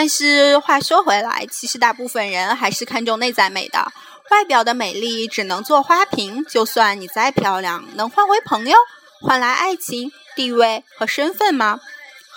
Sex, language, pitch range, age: female, Chinese, 200-280 Hz, 20-39